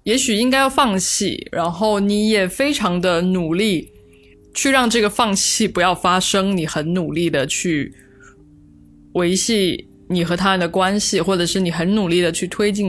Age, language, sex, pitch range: 20-39, Chinese, female, 155-215 Hz